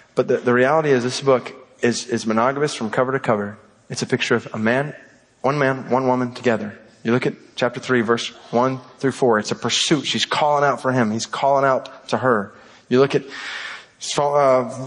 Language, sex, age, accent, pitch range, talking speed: English, male, 30-49, American, 125-145 Hz, 205 wpm